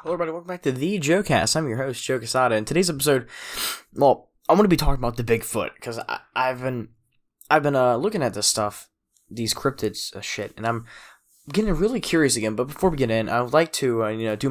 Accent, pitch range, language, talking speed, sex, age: American, 110-140 Hz, English, 230 wpm, male, 10-29